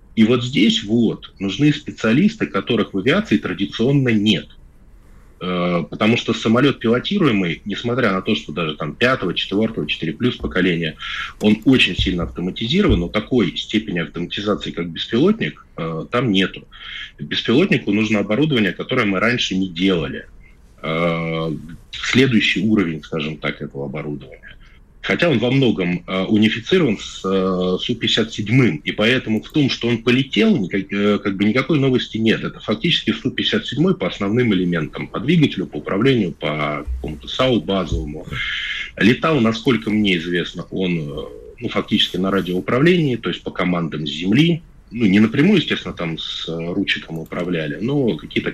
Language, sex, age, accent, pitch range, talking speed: Russian, male, 20-39, native, 85-115 Hz, 135 wpm